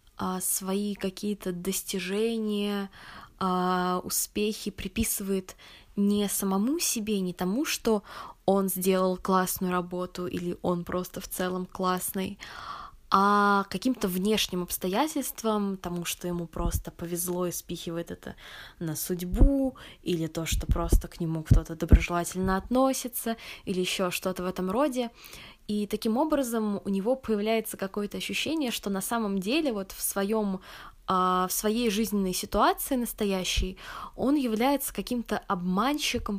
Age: 20-39